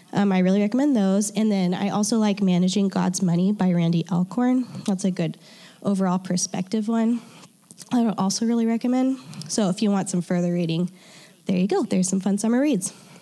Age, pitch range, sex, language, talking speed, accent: 10-29, 190-235 Hz, female, English, 190 wpm, American